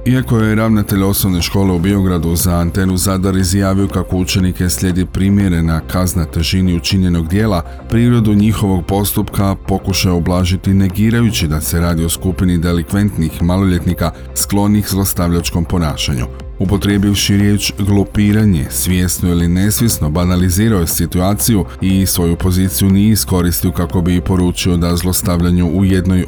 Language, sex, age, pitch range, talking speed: Croatian, male, 40-59, 85-100 Hz, 130 wpm